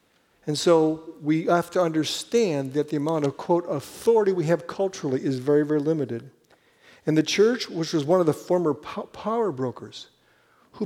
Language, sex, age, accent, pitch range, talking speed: English, male, 50-69, American, 140-175 Hz, 170 wpm